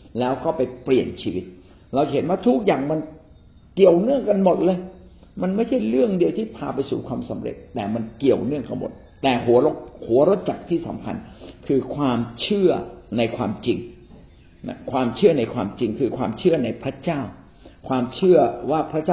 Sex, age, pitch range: male, 60-79, 110-160 Hz